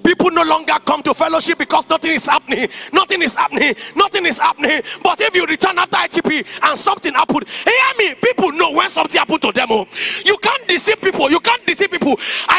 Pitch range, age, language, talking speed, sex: 310-400 Hz, 30-49, English, 205 wpm, male